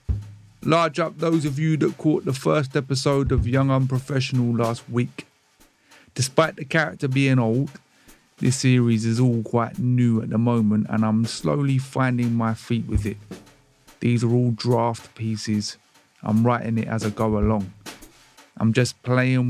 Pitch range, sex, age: 115-130 Hz, male, 30-49